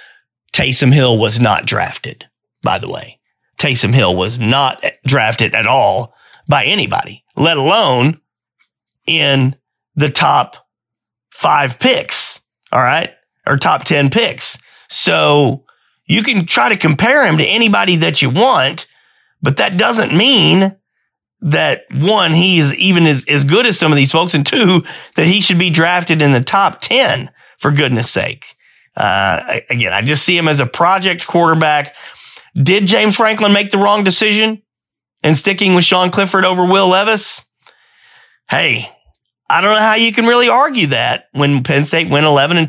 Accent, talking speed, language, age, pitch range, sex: American, 160 wpm, English, 40-59, 140-200 Hz, male